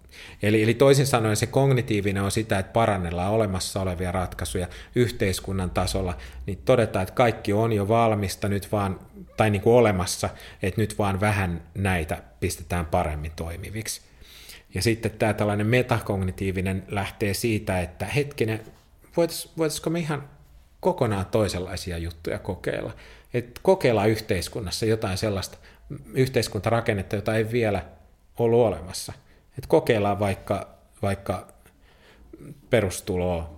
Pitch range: 90-115 Hz